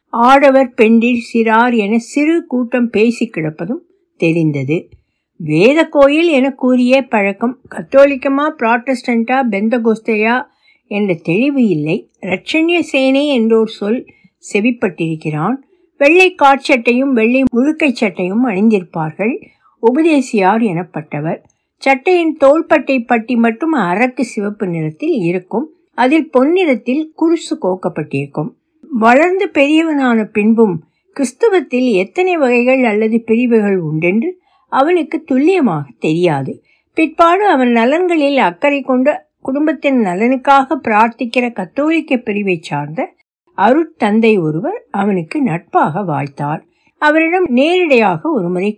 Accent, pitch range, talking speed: native, 195-290 Hz, 90 wpm